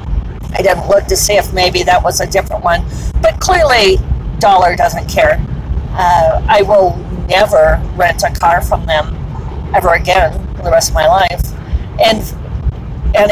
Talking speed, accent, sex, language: 160 wpm, American, female, English